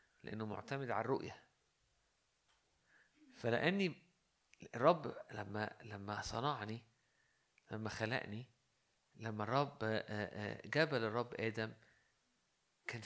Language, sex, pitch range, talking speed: Arabic, male, 110-135 Hz, 80 wpm